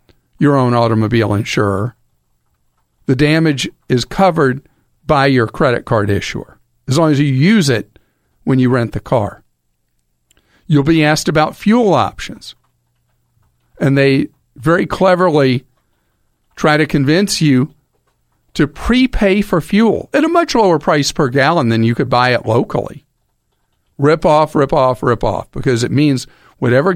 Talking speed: 145 wpm